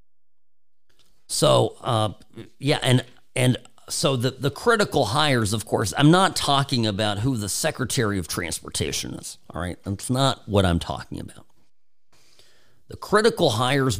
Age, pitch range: 40-59, 100-140 Hz